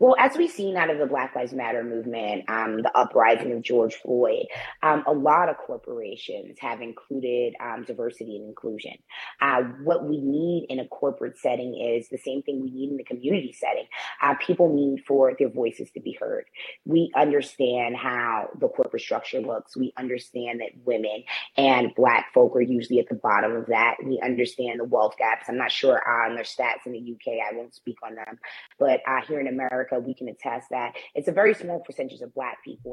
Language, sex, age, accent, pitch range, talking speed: English, female, 20-39, American, 125-170 Hz, 205 wpm